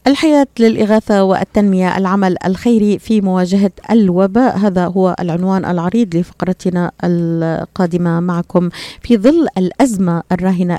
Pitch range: 175-200 Hz